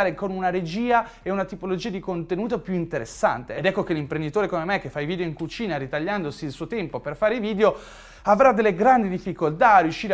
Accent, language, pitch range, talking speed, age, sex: native, Italian, 150-205 Hz, 215 wpm, 30-49, male